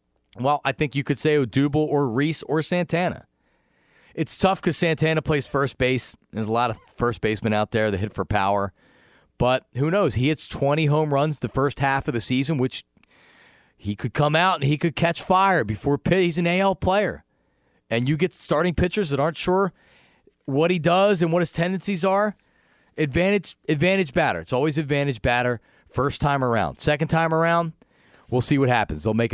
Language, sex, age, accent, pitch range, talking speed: English, male, 40-59, American, 115-160 Hz, 190 wpm